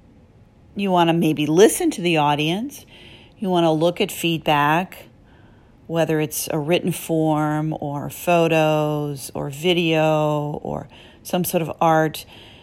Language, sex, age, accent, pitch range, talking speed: English, female, 40-59, American, 155-195 Hz, 135 wpm